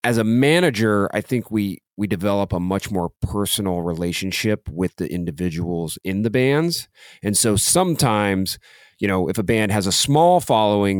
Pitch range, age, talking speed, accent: 90-115 Hz, 30-49, 170 wpm, American